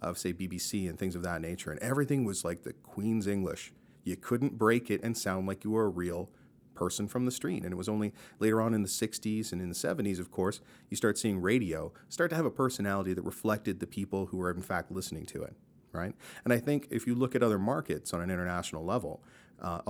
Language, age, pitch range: English, 40-59, 95-120 Hz